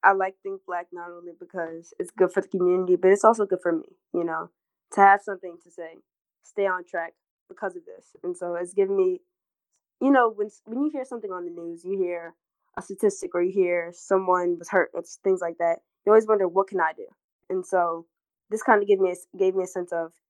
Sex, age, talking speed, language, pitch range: female, 20-39, 235 wpm, English, 175-205 Hz